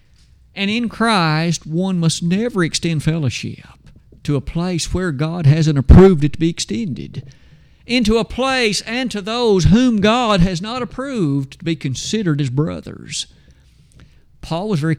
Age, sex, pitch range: 50-69, male, 135-180 Hz